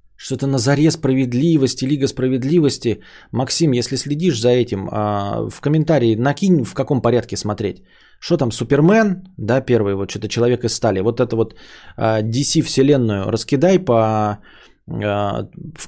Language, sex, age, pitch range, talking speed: Bulgarian, male, 20-39, 105-140 Hz, 130 wpm